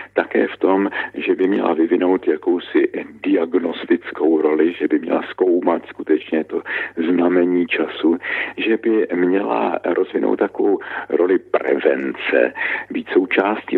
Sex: male